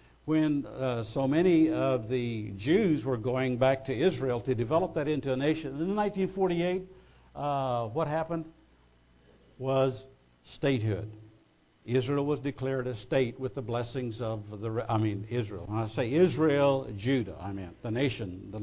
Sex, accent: male, American